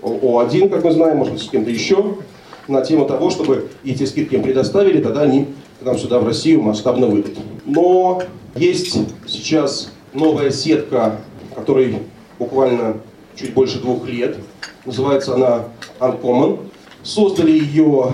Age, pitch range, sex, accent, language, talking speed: 40-59, 120-155 Hz, male, native, Russian, 140 wpm